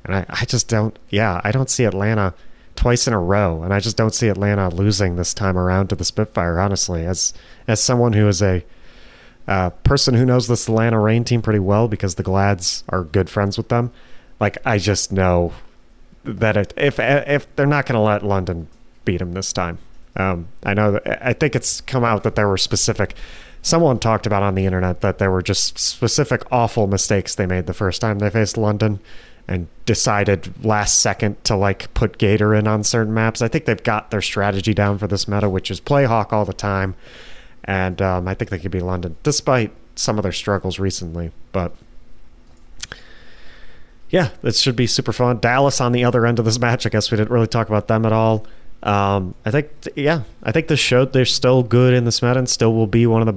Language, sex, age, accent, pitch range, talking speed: English, male, 30-49, American, 100-120 Hz, 215 wpm